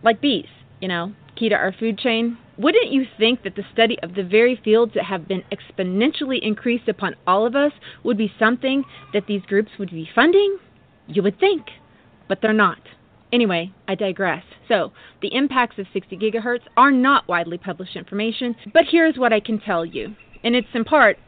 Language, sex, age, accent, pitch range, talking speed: English, female, 30-49, American, 195-265 Hz, 190 wpm